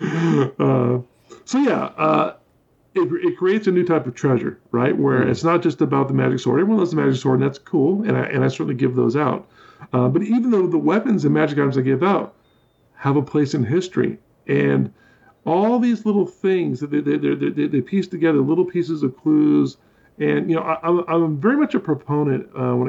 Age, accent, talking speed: 40-59, American, 215 wpm